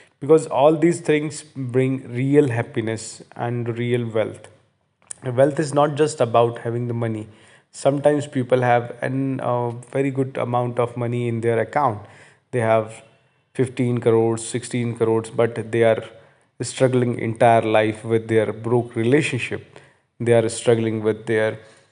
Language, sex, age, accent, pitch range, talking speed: Hindi, male, 20-39, native, 115-130 Hz, 145 wpm